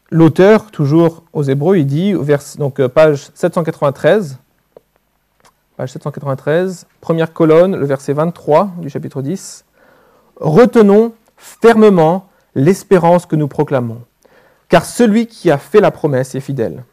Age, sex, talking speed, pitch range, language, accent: 40-59, male, 125 wpm, 150-215 Hz, French, French